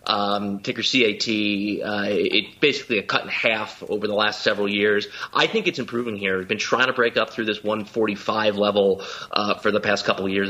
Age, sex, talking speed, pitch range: 30-49, male, 215 wpm, 105-120 Hz